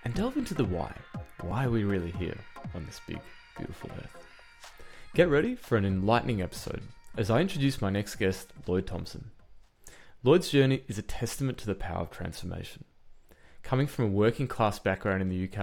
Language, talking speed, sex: English, 185 wpm, male